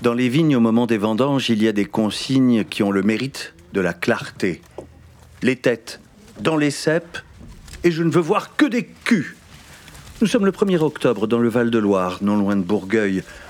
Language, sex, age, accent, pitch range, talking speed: French, male, 50-69, French, 105-150 Hz, 195 wpm